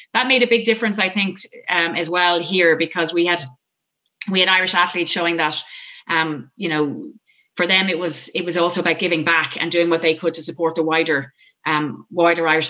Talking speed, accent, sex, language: 215 wpm, Irish, female, English